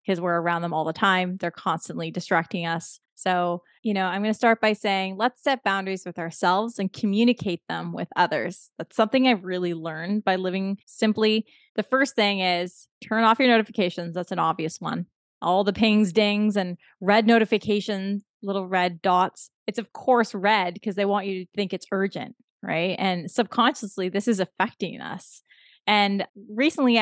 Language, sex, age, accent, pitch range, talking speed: English, female, 20-39, American, 180-220 Hz, 180 wpm